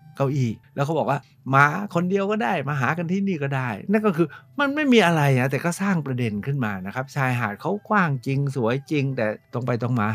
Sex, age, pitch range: male, 60-79, 110-150 Hz